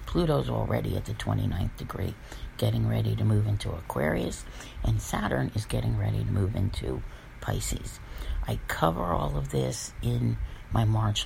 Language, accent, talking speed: English, American, 155 wpm